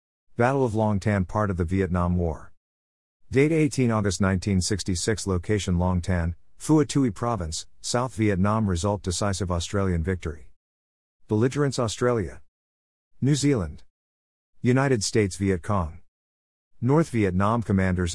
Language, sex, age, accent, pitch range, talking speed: English, male, 50-69, American, 85-115 Hz, 115 wpm